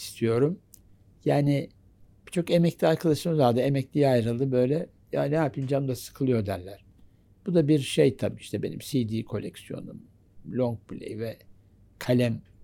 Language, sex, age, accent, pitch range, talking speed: Turkish, male, 60-79, native, 100-135 Hz, 135 wpm